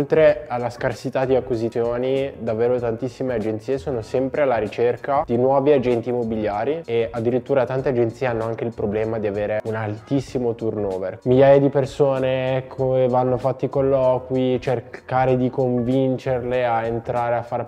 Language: Italian